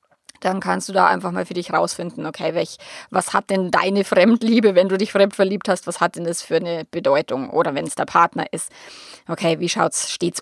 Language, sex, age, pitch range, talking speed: German, female, 20-39, 180-245 Hz, 230 wpm